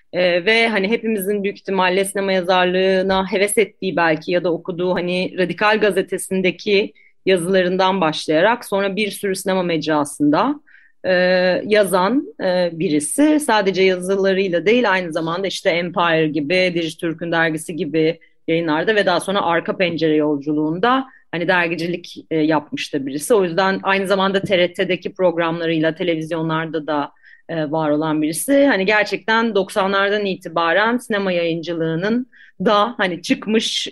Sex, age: female, 30-49